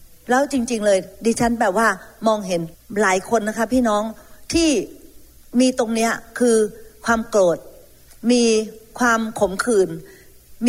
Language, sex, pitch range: Thai, female, 215-265 Hz